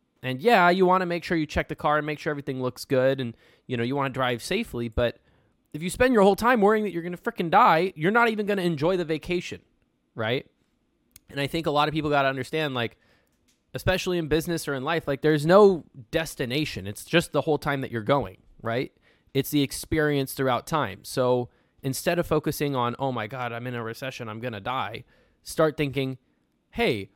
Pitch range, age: 125-165 Hz, 20-39